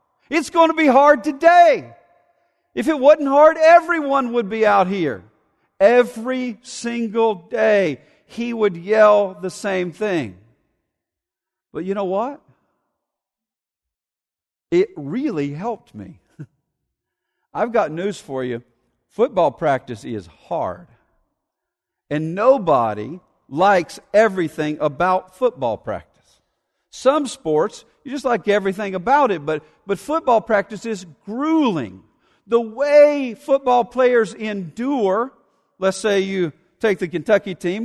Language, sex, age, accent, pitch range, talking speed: English, male, 50-69, American, 185-255 Hz, 115 wpm